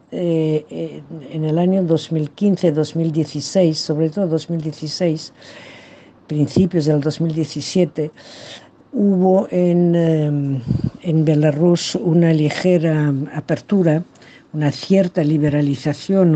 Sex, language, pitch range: female, Spanish, 145-170 Hz